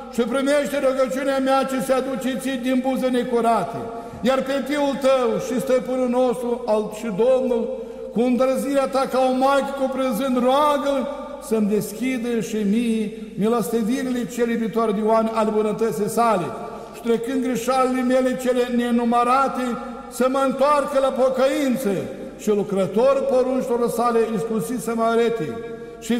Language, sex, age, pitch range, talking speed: Romanian, male, 60-79, 235-260 Hz, 130 wpm